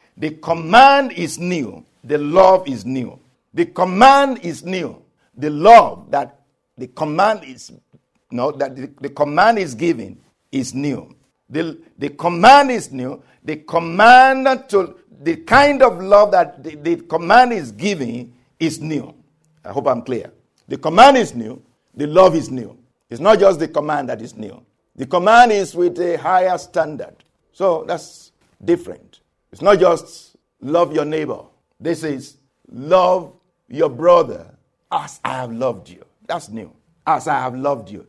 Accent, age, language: Nigerian, 50-69, English